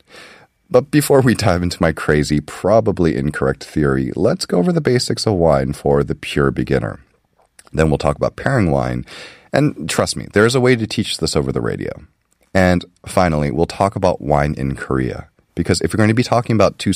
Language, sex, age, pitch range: Korean, male, 30-49, 75-100 Hz